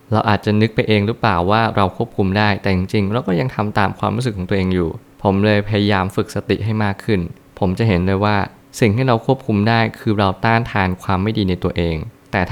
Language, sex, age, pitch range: Thai, male, 20-39, 95-115 Hz